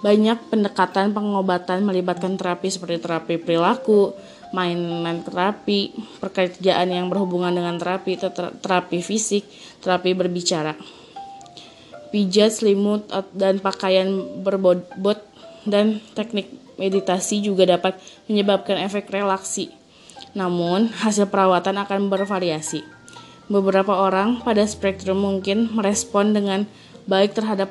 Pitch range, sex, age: 185-205 Hz, female, 20-39